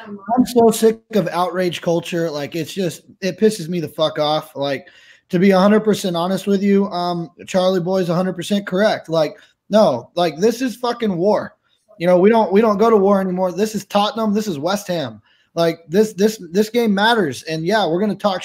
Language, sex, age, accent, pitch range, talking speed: English, male, 20-39, American, 195-245 Hz, 205 wpm